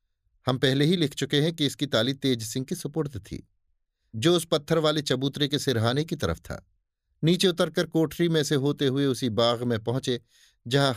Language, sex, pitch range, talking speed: Hindi, male, 110-145 Hz, 195 wpm